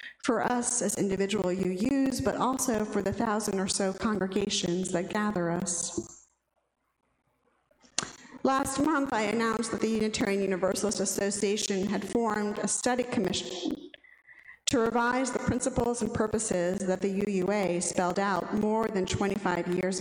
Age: 50-69